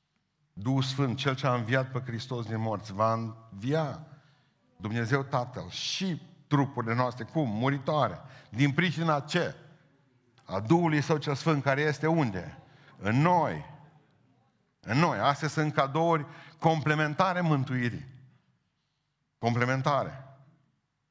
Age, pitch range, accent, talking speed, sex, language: 50-69, 110-145 Hz, native, 115 wpm, male, Romanian